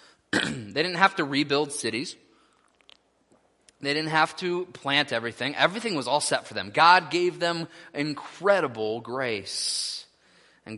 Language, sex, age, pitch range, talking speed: English, male, 20-39, 135-190 Hz, 135 wpm